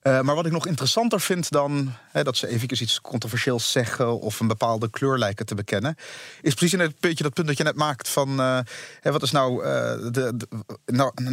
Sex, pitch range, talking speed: male, 130-170 Hz, 220 wpm